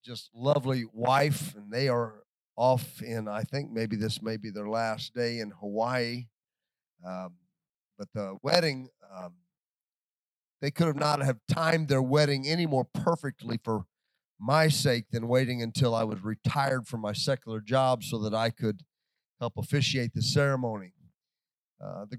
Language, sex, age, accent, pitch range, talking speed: English, male, 40-59, American, 115-145 Hz, 155 wpm